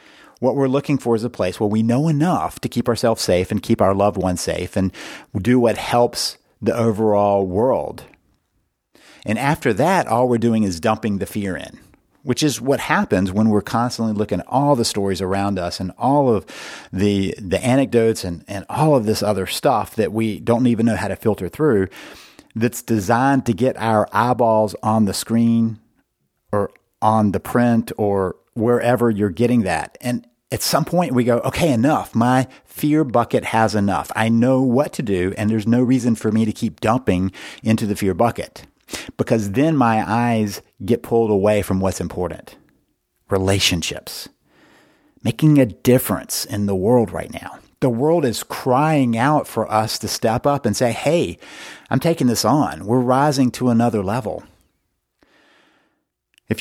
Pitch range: 105-125 Hz